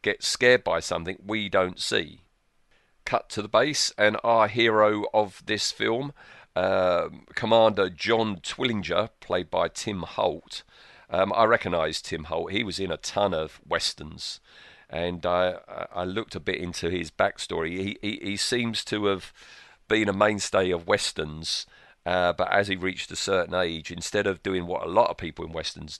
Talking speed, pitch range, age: 175 wpm, 85-105 Hz, 40-59